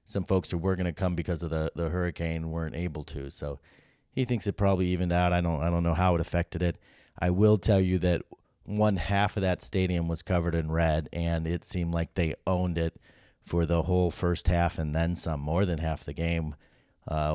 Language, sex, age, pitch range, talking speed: English, male, 30-49, 85-100 Hz, 225 wpm